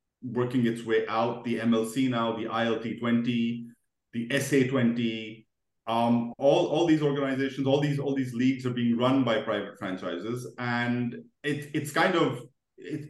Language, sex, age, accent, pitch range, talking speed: English, male, 30-49, Indian, 115-140 Hz, 150 wpm